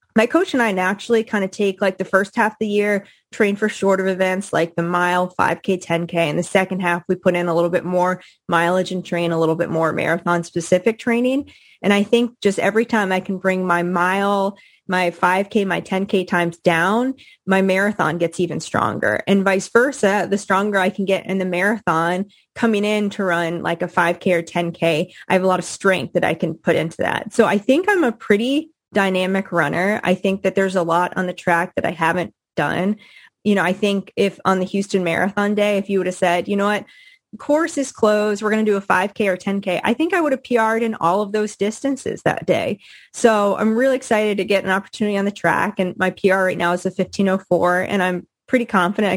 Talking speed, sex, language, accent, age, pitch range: 225 wpm, female, English, American, 20-39, 180-215 Hz